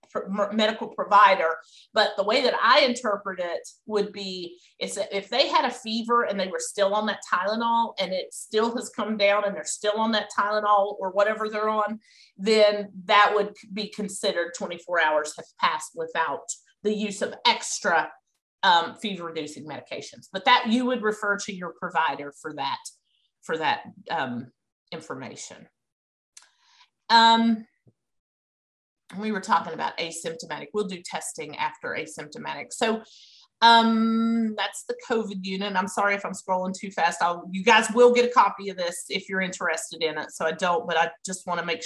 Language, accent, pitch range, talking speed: English, American, 185-230 Hz, 170 wpm